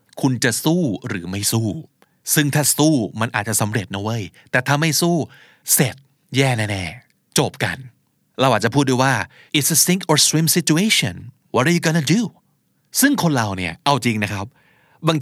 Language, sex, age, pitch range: Thai, male, 20-39, 115-155 Hz